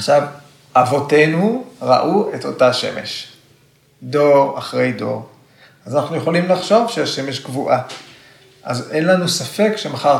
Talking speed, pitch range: 120 wpm, 130-175 Hz